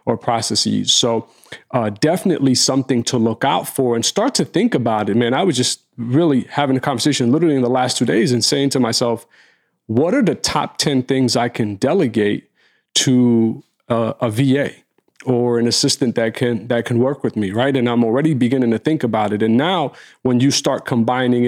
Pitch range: 120-140 Hz